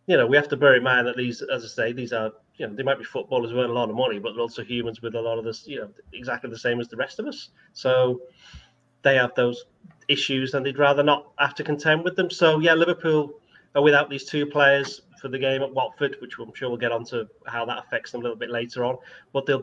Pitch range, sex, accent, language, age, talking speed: 120-145 Hz, male, British, English, 30-49, 280 wpm